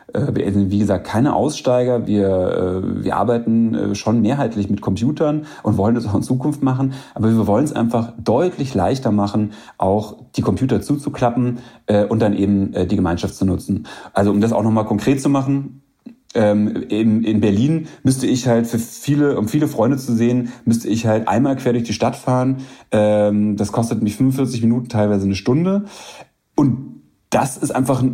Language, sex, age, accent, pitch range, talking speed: German, male, 30-49, German, 105-125 Hz, 175 wpm